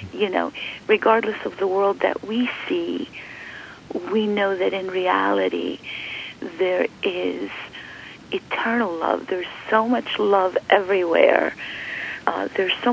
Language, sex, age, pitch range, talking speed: English, female, 40-59, 185-255 Hz, 120 wpm